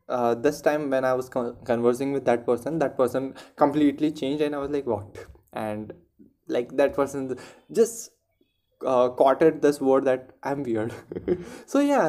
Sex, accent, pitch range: male, native, 120-145 Hz